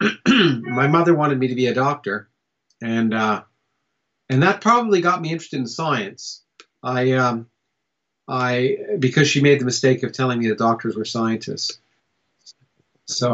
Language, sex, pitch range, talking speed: English, male, 115-145 Hz, 155 wpm